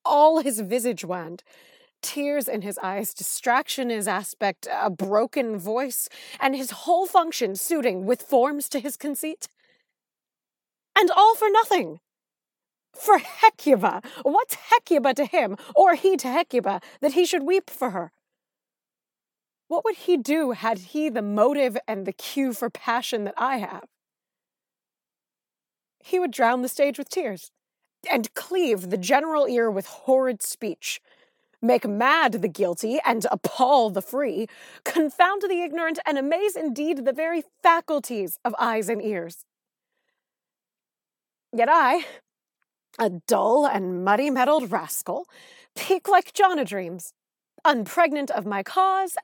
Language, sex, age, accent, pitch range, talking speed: English, female, 30-49, American, 225-335 Hz, 135 wpm